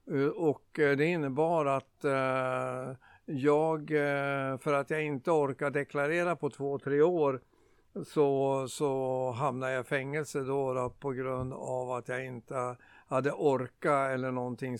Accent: native